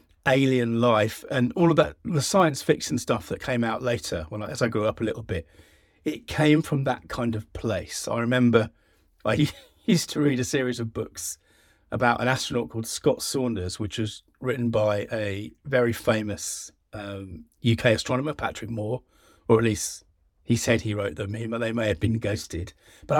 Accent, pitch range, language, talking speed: British, 100-125 Hz, English, 190 wpm